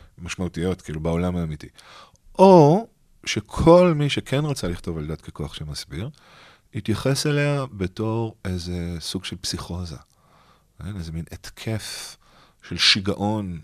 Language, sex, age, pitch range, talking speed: Hebrew, male, 40-59, 90-120 Hz, 115 wpm